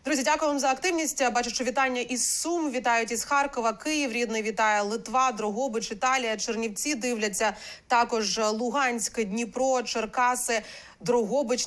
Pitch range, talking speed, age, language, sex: 215-255 Hz, 135 wpm, 30-49, Ukrainian, female